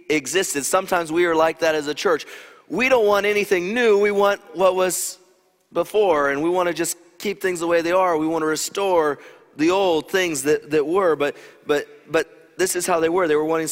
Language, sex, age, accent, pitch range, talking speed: English, male, 30-49, American, 145-190 Hz, 225 wpm